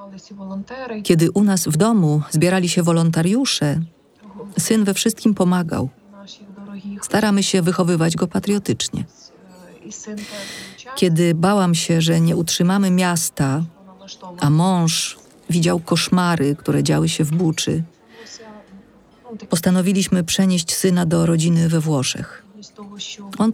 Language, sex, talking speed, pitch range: Polish, female, 105 wpm, 160-205 Hz